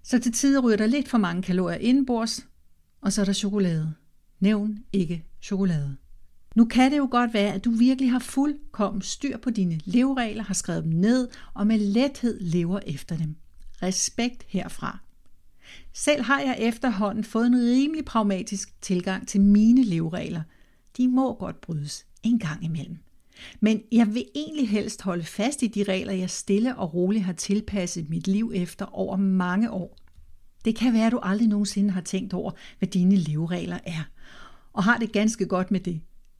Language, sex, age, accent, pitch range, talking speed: Danish, female, 60-79, native, 180-235 Hz, 175 wpm